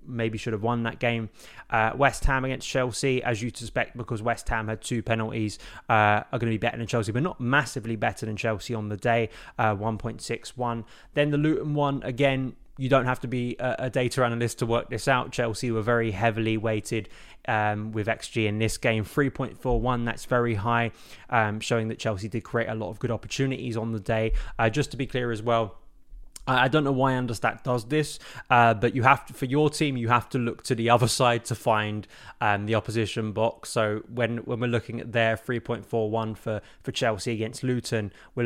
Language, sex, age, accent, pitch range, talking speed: English, male, 20-39, British, 110-125 Hz, 210 wpm